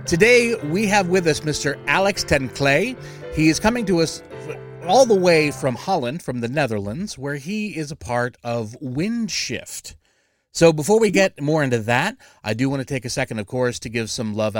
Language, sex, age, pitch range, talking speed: English, male, 30-49, 120-175 Hz, 195 wpm